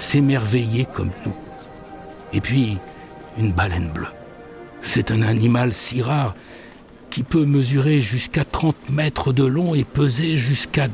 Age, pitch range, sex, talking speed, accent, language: 60-79, 110-160 Hz, male, 130 wpm, French, English